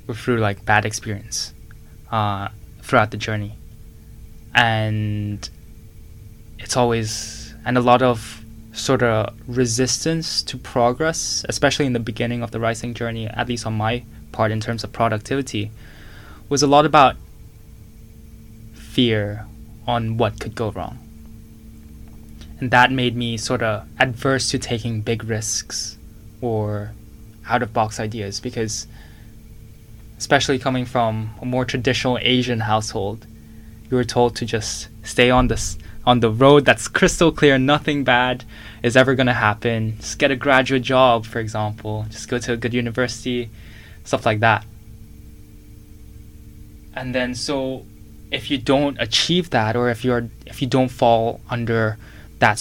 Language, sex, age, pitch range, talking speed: English, male, 10-29, 110-125 Hz, 145 wpm